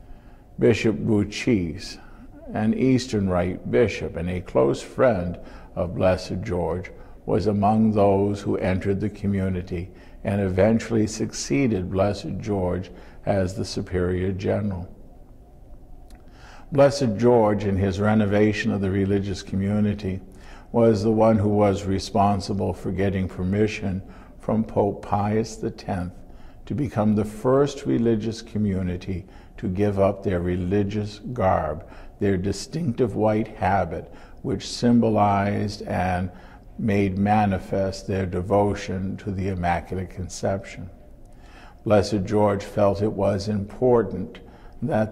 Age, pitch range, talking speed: 60-79, 95-105 Hz, 115 wpm